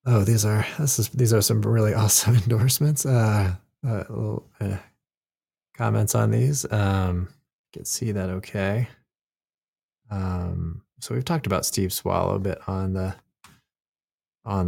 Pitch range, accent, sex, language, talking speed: 90-115 Hz, American, male, English, 145 wpm